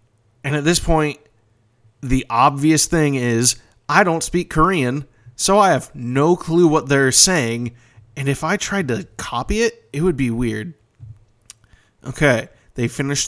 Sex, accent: male, American